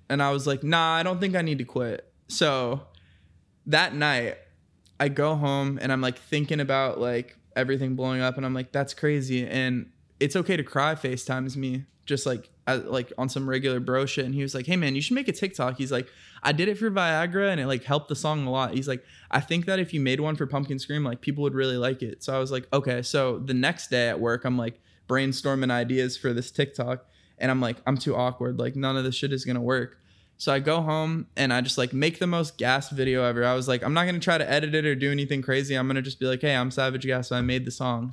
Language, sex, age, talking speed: English, male, 20-39, 265 wpm